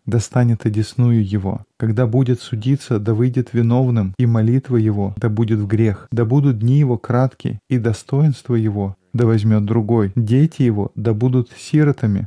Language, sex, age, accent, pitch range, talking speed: Russian, male, 20-39, native, 115-130 Hz, 155 wpm